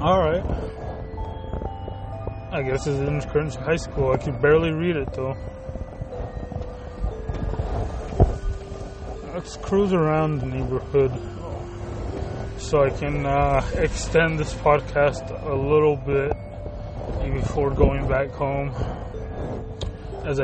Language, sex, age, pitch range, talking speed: English, male, 20-39, 100-140 Hz, 100 wpm